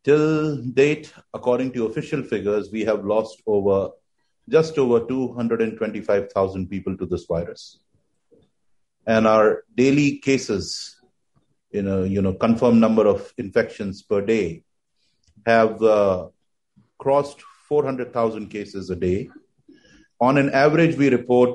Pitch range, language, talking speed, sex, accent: 105-135 Hz, English, 120 wpm, male, Indian